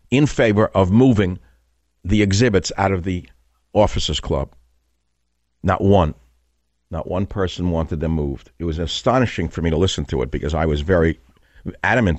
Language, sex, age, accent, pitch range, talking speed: English, male, 50-69, American, 70-95 Hz, 160 wpm